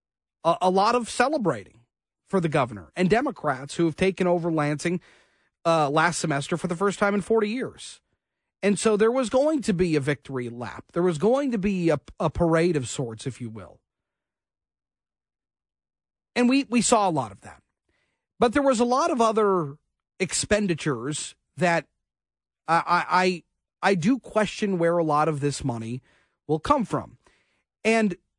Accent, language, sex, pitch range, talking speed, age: American, English, male, 150-210 Hz, 165 wpm, 40-59